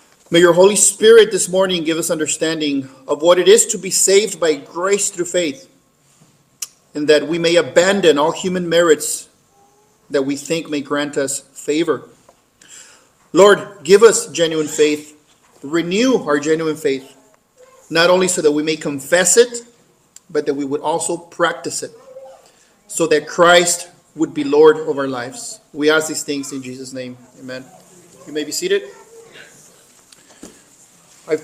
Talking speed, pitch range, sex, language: 155 wpm, 155-230 Hz, male, English